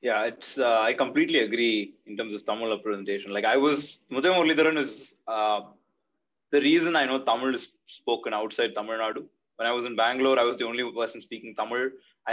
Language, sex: Tamil, male